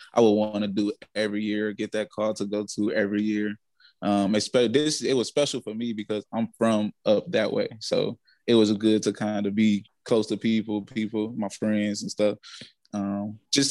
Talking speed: 205 wpm